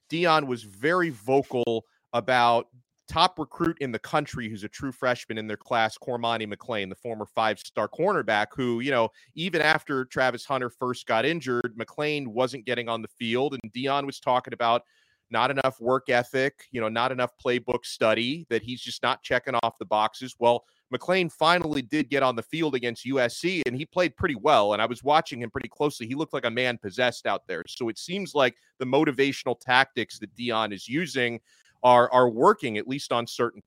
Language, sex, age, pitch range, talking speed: English, male, 30-49, 115-140 Hz, 195 wpm